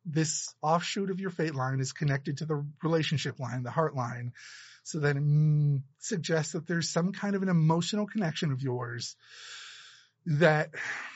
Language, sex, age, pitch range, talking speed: English, male, 30-49, 140-175 Hz, 155 wpm